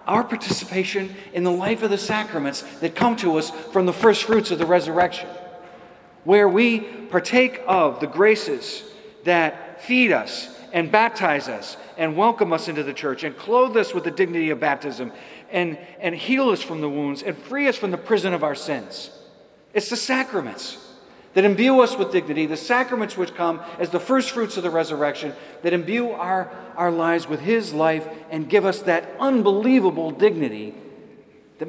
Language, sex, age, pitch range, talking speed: English, male, 40-59, 155-210 Hz, 180 wpm